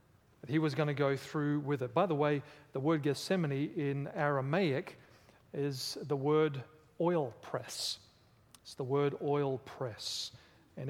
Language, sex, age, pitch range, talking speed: English, male, 40-59, 130-160 Hz, 150 wpm